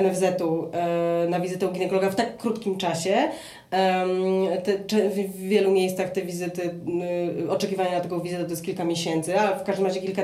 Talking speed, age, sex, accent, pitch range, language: 160 wpm, 20-39, female, native, 180-210 Hz, Polish